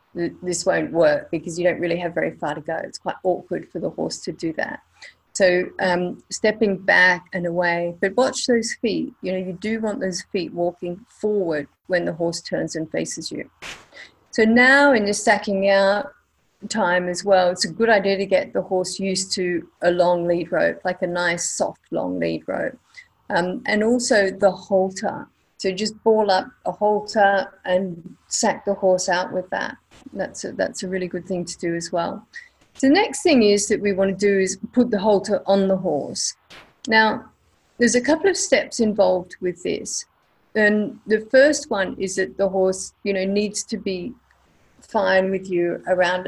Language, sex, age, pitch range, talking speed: English, female, 40-59, 180-215 Hz, 190 wpm